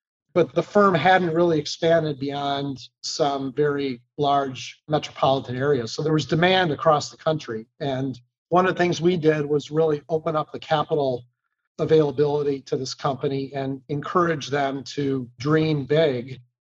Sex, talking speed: male, 150 wpm